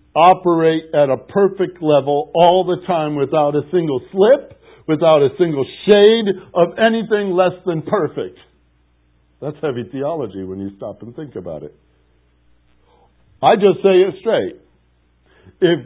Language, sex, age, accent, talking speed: English, male, 60-79, American, 140 wpm